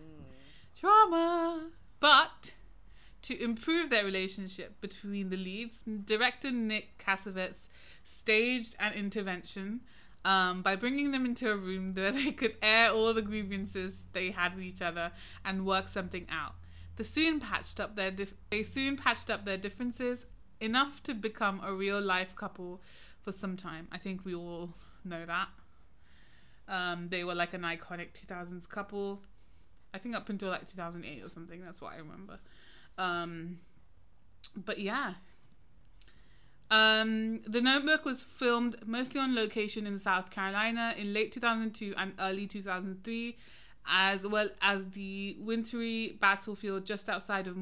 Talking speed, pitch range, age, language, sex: 155 wpm, 185-225 Hz, 20-39, English, female